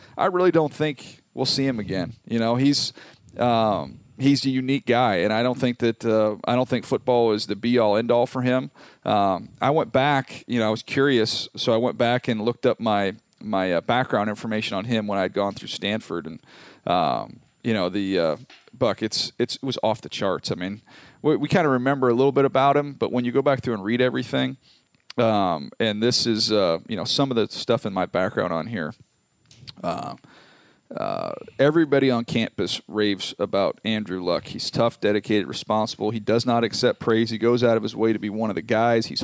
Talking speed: 220 wpm